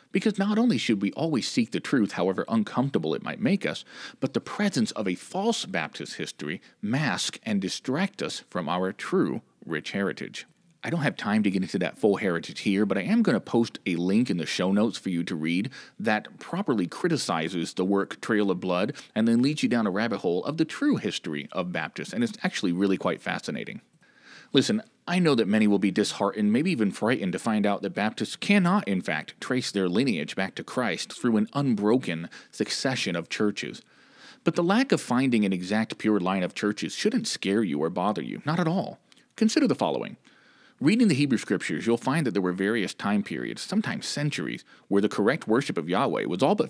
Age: 40-59